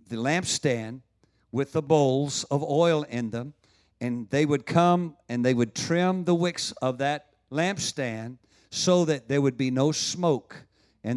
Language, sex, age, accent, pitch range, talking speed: English, male, 50-69, American, 120-155 Hz, 160 wpm